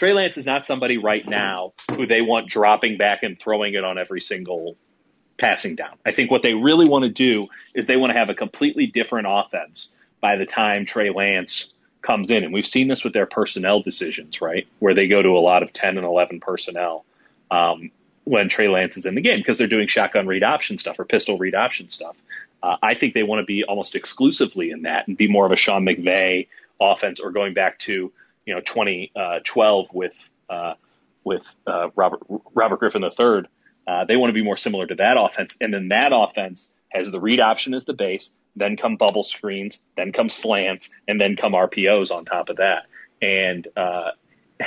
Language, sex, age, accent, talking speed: English, male, 30-49, American, 210 wpm